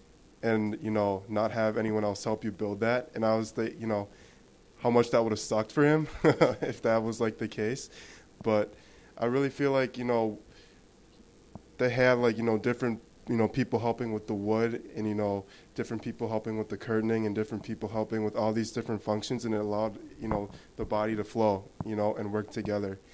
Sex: male